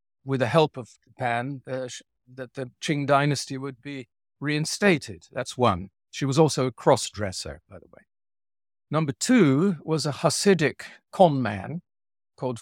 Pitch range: 110-140 Hz